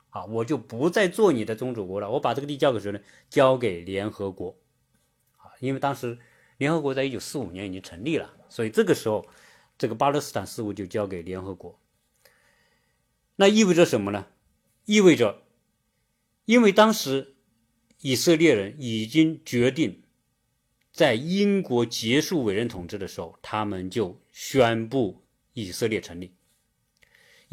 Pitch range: 105-170 Hz